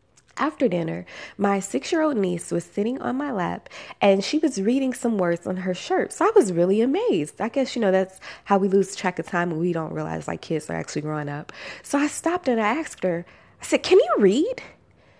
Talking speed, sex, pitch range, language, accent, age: 225 wpm, female, 195-285 Hz, English, American, 20-39